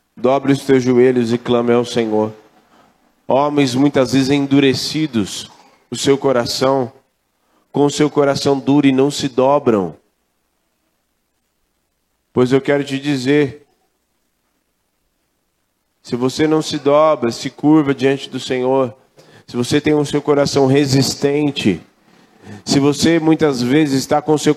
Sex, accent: male, Brazilian